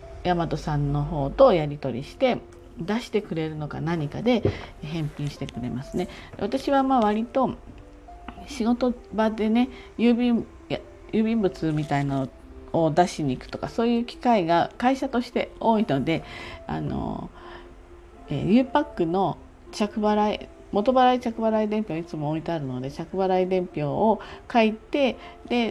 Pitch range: 145-235 Hz